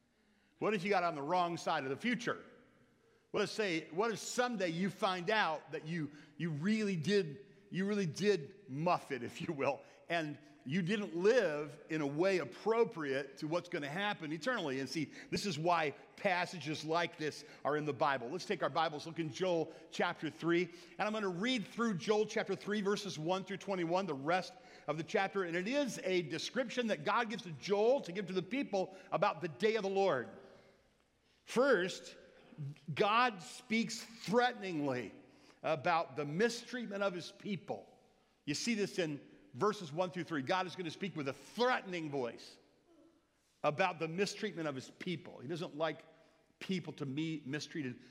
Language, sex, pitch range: English, male, 160-210 Hz